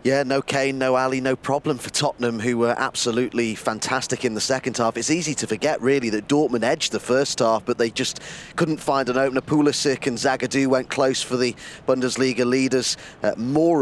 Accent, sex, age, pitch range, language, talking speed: British, male, 30-49, 120-145 Hz, English, 195 wpm